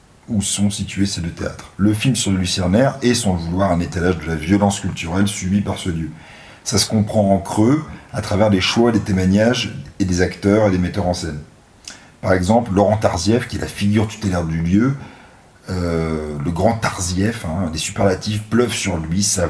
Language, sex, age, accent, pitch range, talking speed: French, male, 40-59, French, 90-110 Hz, 205 wpm